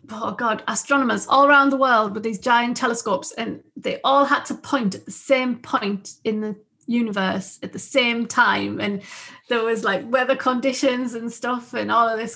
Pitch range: 205-255 Hz